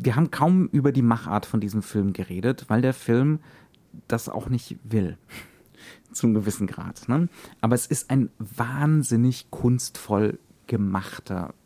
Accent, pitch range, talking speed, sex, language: German, 105-130 Hz, 140 wpm, male, German